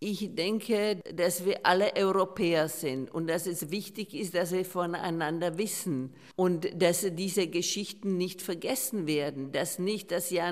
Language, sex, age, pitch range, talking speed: Czech, female, 50-69, 170-200 Hz, 155 wpm